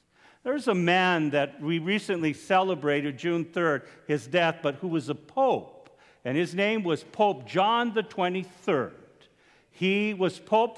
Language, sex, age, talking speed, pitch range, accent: English, male, 50-69, 145 wpm, 155-215 Hz, American